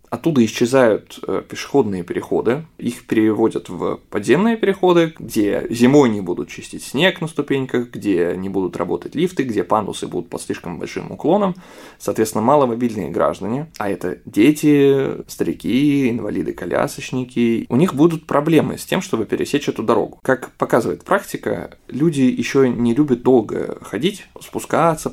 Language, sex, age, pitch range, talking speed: Russian, male, 20-39, 110-155 Hz, 135 wpm